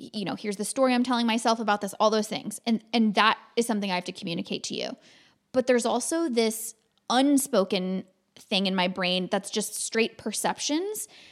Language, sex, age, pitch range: English, female, 20-39, 205-255 Hz